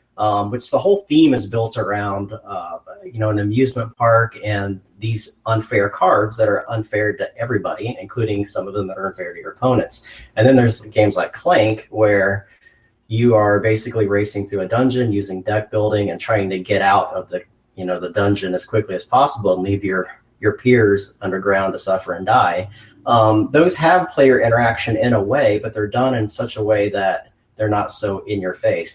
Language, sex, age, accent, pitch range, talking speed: English, male, 30-49, American, 100-115 Hz, 195 wpm